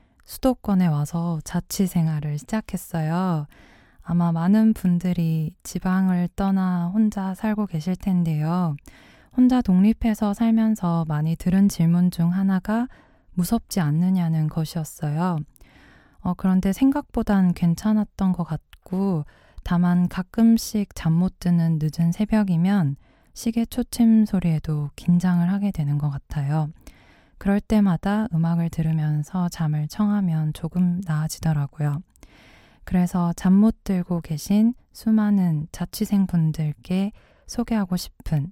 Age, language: 20-39, Korean